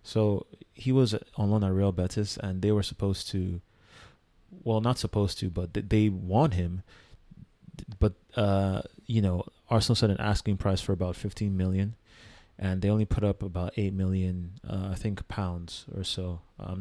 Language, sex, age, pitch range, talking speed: English, male, 30-49, 95-110 Hz, 180 wpm